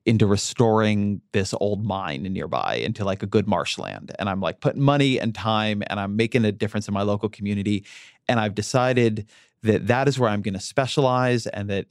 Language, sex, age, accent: English, male, 30-49, American